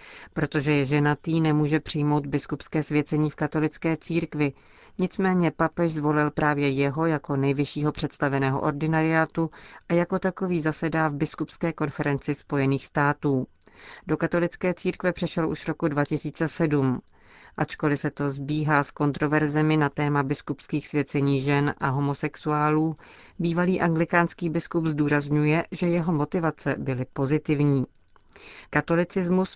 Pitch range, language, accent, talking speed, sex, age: 145-165 Hz, Czech, native, 120 wpm, female, 40-59